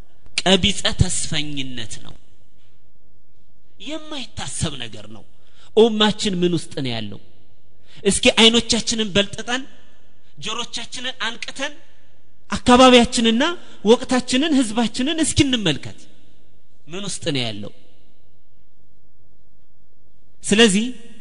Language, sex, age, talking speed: Amharic, male, 30-49, 75 wpm